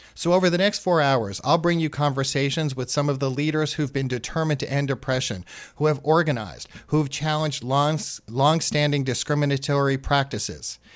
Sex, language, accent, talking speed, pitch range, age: male, English, American, 170 wpm, 125-160 Hz, 40-59